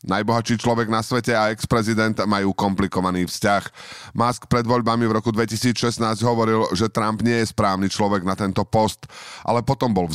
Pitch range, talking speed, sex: 100-120 Hz, 170 wpm, male